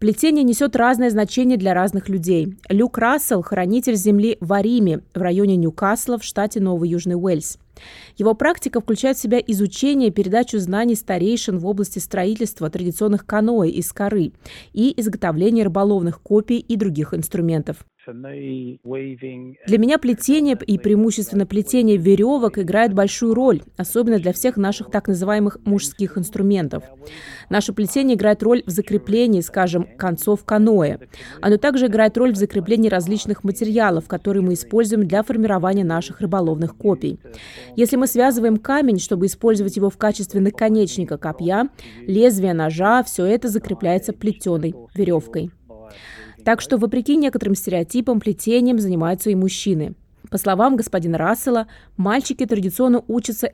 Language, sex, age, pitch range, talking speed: Russian, female, 20-39, 185-225 Hz, 135 wpm